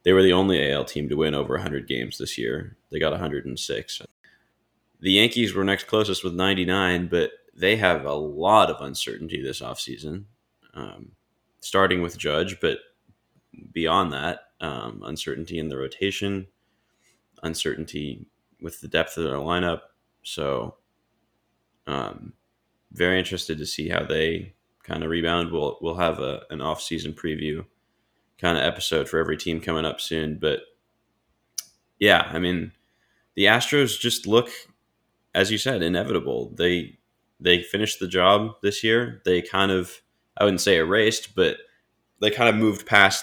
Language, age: English, 20-39